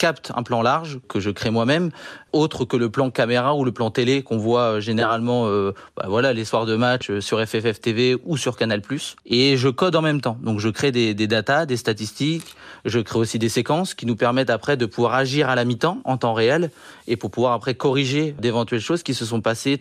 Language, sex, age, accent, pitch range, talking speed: French, male, 30-49, French, 115-140 Hz, 225 wpm